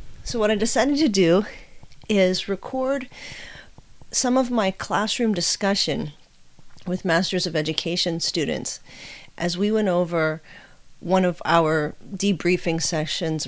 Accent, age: American, 40-59